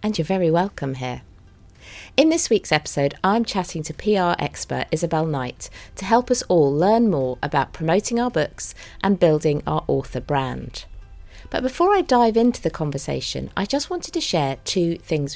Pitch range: 140-205 Hz